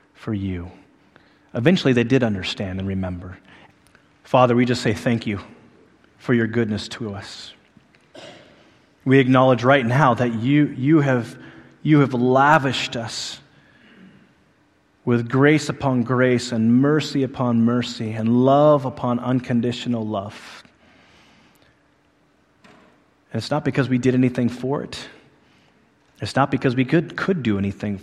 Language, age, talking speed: English, 30-49, 130 wpm